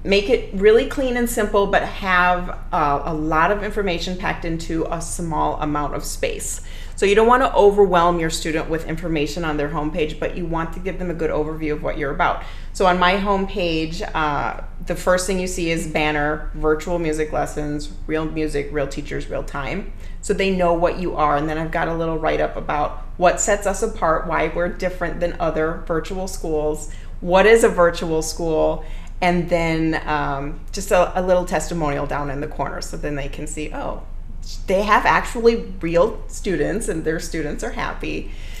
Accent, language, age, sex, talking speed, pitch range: American, English, 30-49, female, 195 wpm, 155-195 Hz